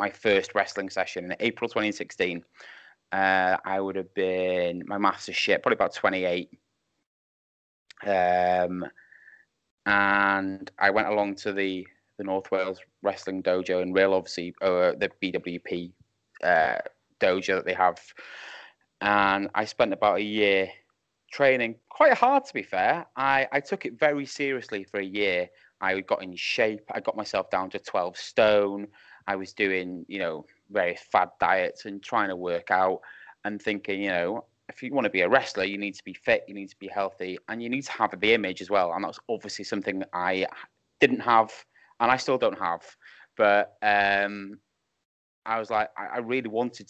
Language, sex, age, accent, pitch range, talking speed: English, male, 20-39, British, 95-110 Hz, 180 wpm